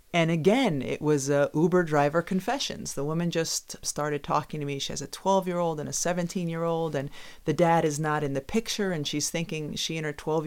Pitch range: 150-195 Hz